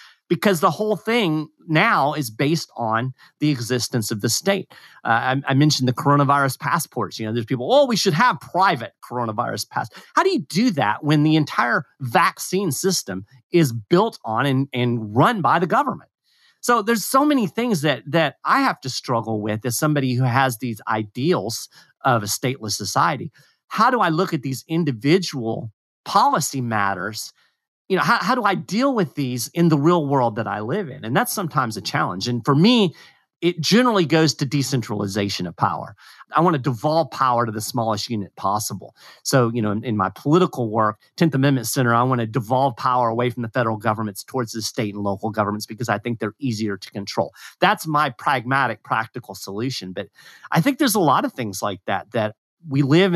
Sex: male